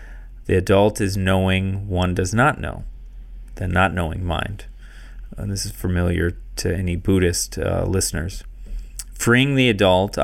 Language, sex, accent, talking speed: English, male, American, 140 wpm